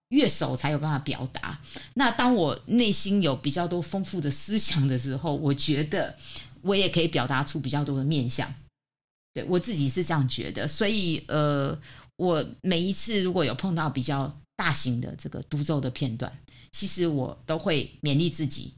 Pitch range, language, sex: 135-180 Hz, Chinese, female